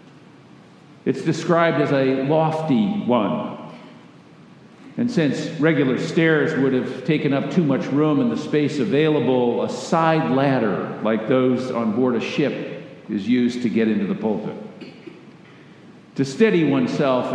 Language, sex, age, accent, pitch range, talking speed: English, male, 50-69, American, 125-165 Hz, 140 wpm